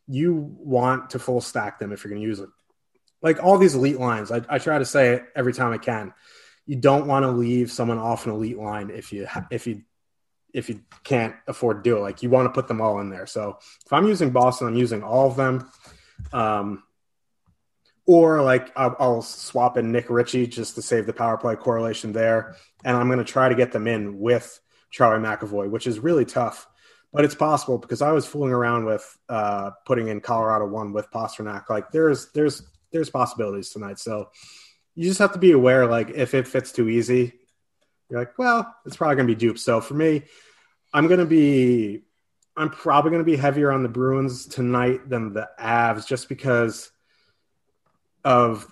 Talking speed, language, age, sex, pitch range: 205 wpm, English, 30-49, male, 110-135 Hz